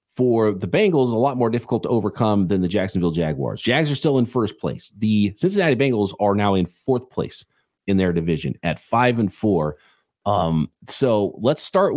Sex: male